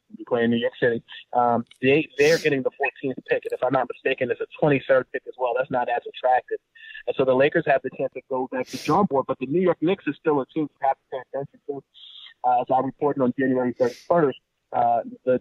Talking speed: 240 wpm